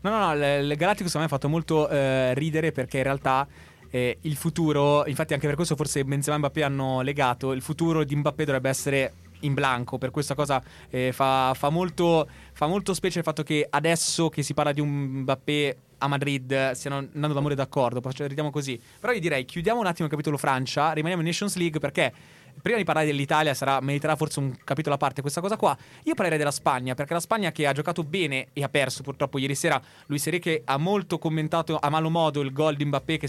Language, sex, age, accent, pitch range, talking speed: Italian, male, 20-39, native, 135-160 Hz, 220 wpm